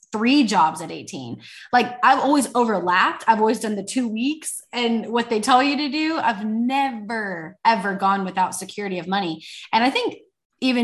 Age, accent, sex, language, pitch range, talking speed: 20-39, American, female, English, 190-240 Hz, 185 wpm